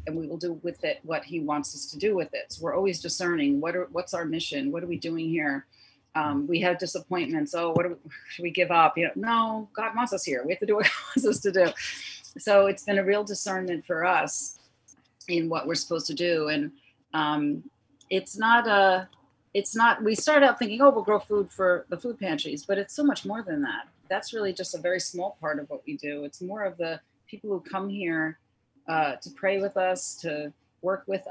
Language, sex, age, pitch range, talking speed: English, female, 40-59, 160-230 Hz, 240 wpm